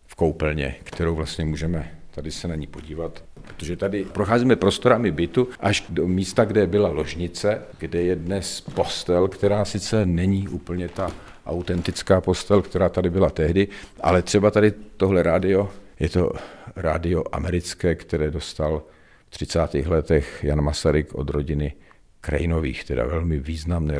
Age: 50-69